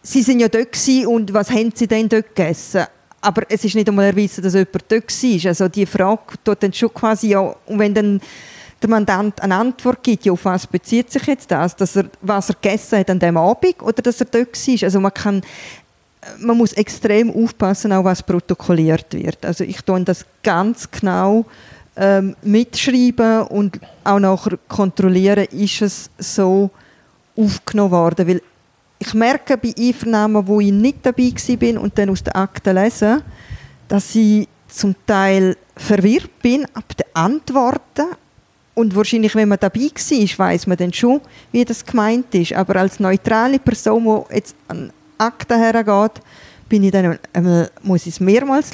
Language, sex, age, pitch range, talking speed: German, female, 20-39, 190-230 Hz, 175 wpm